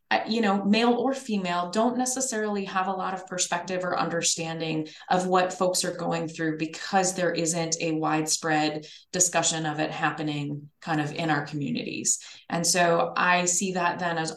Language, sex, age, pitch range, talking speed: English, female, 20-39, 160-190 Hz, 170 wpm